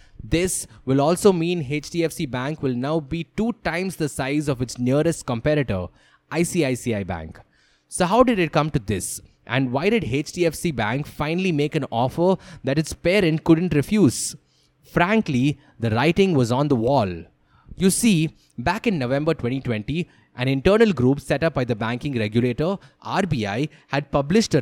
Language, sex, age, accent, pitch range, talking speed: English, male, 20-39, Indian, 120-170 Hz, 160 wpm